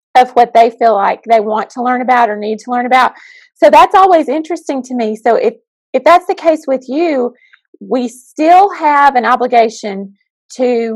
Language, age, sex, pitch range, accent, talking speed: English, 30-49, female, 225-290 Hz, American, 190 wpm